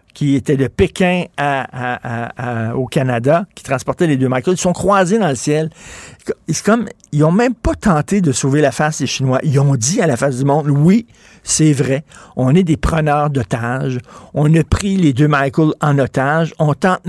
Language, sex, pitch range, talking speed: French, male, 125-165 Hz, 210 wpm